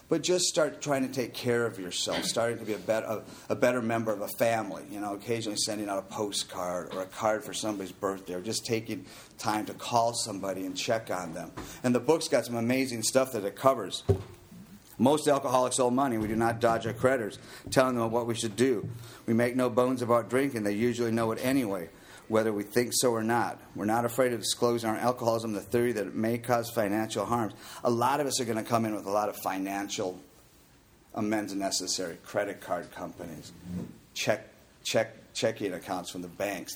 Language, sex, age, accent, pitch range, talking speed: English, male, 50-69, American, 105-125 Hz, 210 wpm